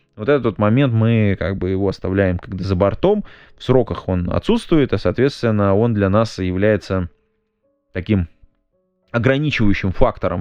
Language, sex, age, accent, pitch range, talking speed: Russian, male, 20-39, native, 95-125 Hz, 140 wpm